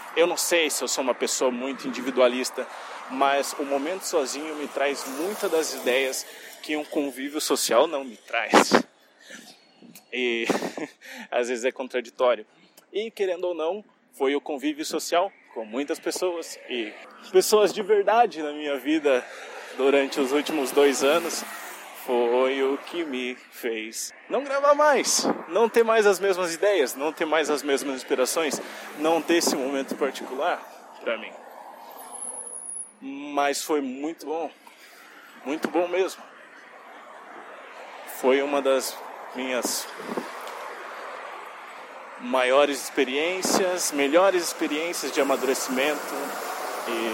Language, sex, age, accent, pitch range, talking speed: Portuguese, male, 20-39, Brazilian, 135-185 Hz, 125 wpm